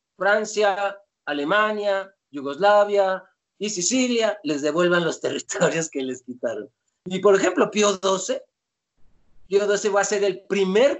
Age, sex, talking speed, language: 50-69, male, 130 wpm, Spanish